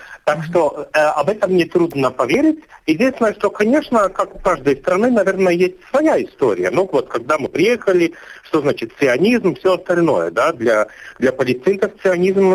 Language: Russian